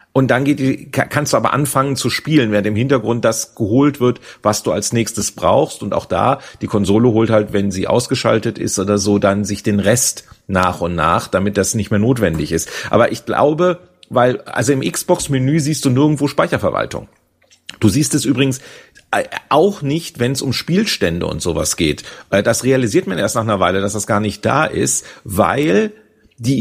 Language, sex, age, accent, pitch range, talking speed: German, male, 40-59, German, 105-140 Hz, 190 wpm